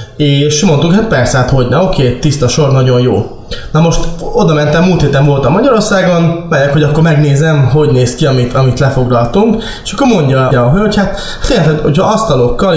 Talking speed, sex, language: 185 wpm, male, Hungarian